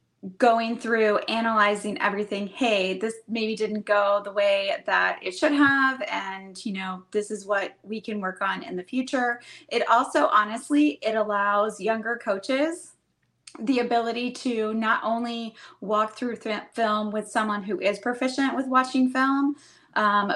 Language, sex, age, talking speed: English, female, 20-39, 155 wpm